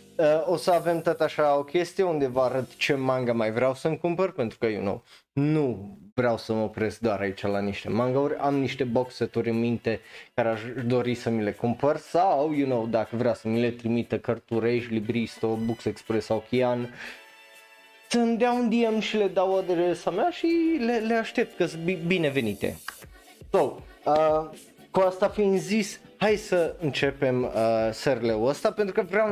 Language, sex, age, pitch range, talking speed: Romanian, male, 20-39, 115-165 Hz, 185 wpm